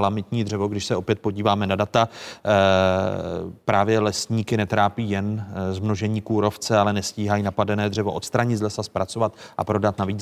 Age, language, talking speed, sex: 30-49, Czech, 145 wpm, male